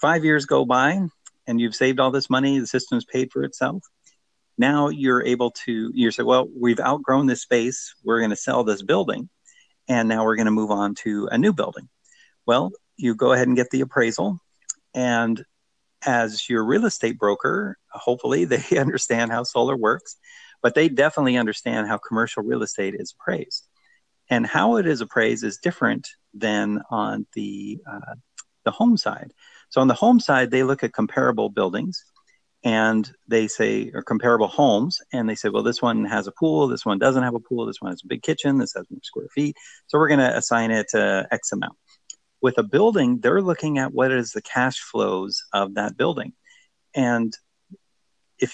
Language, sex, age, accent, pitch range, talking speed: English, male, 50-69, American, 115-145 Hz, 190 wpm